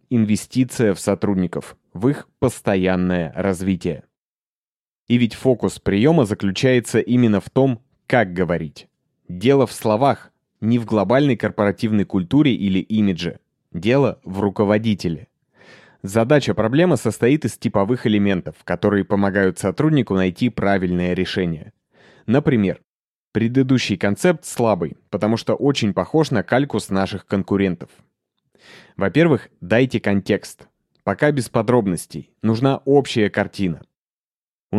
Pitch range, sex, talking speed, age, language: 95-125 Hz, male, 110 wpm, 20-39, Russian